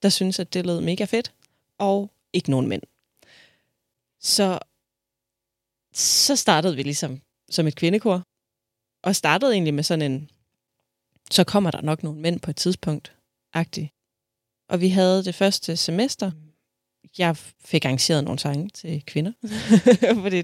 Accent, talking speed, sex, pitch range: native, 145 wpm, female, 155-195 Hz